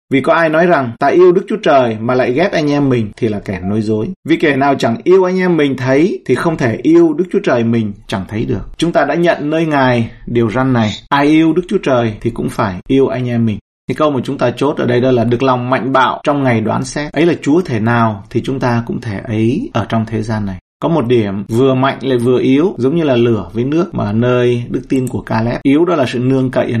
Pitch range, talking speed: 115-145 Hz, 275 wpm